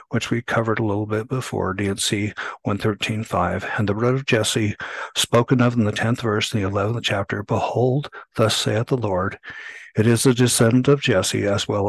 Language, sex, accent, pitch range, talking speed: English, male, American, 105-120 Hz, 190 wpm